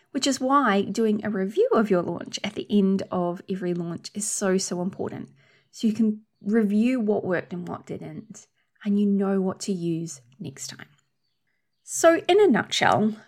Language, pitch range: English, 190-235 Hz